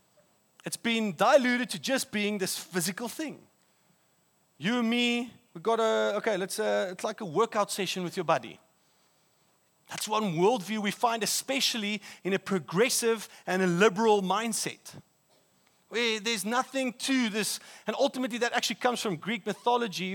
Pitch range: 175-245 Hz